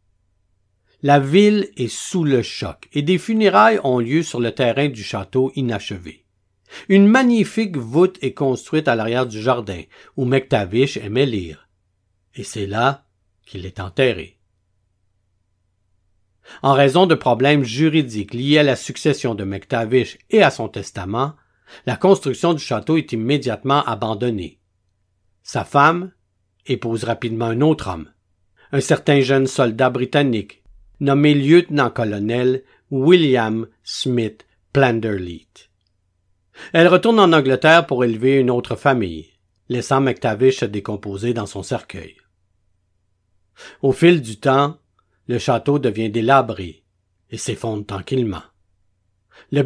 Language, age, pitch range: French, 50-69, 95-140 Hz